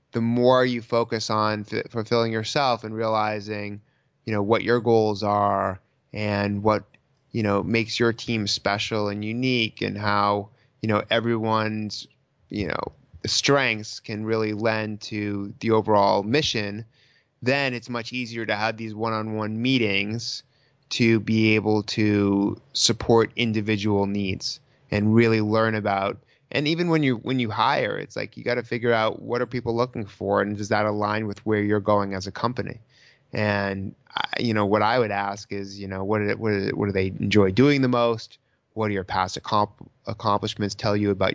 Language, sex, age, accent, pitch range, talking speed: English, male, 20-39, American, 105-120 Hz, 180 wpm